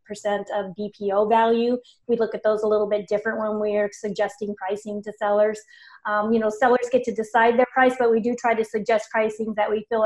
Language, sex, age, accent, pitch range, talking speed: English, female, 30-49, American, 215-240 Hz, 220 wpm